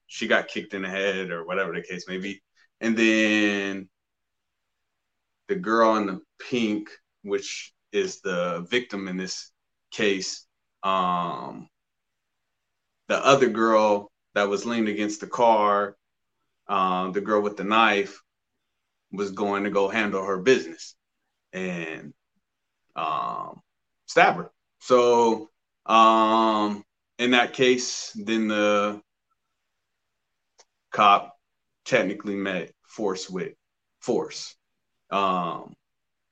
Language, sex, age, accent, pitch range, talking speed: English, male, 30-49, American, 100-115 Hz, 105 wpm